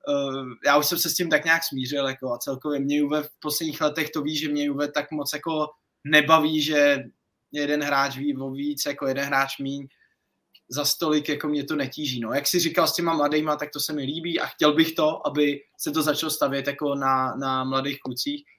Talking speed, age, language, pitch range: 215 wpm, 20-39, Czech, 140-180 Hz